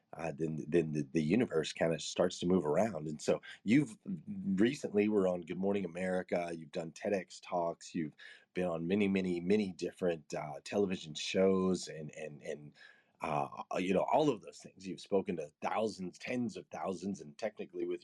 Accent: American